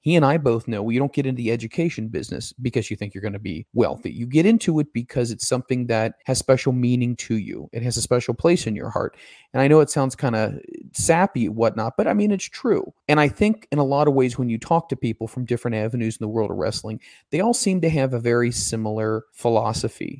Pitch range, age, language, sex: 115-135 Hz, 30-49, English, male